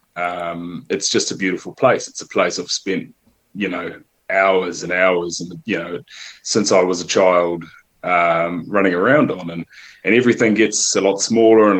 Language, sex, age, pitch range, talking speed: English, male, 20-39, 90-105 Hz, 185 wpm